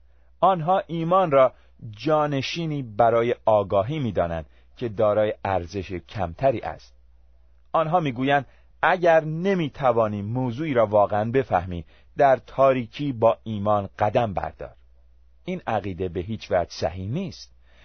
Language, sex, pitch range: Persian, male, 90-145 Hz